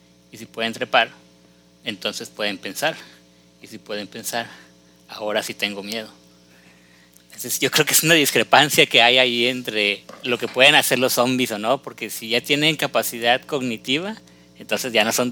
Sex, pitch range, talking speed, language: male, 100-135 Hz, 170 wpm, Spanish